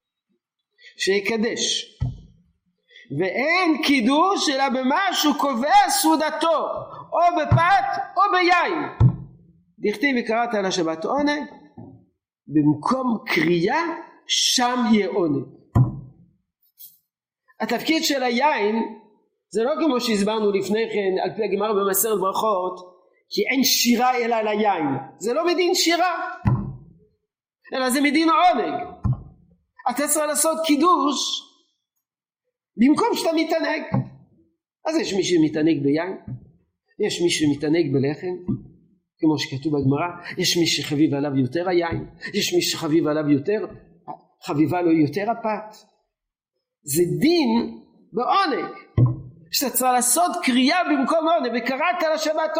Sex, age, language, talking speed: male, 50-69, Hebrew, 110 wpm